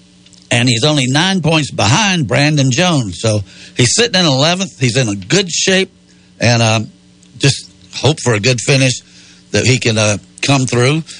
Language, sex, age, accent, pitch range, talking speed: English, male, 60-79, American, 110-155 Hz, 170 wpm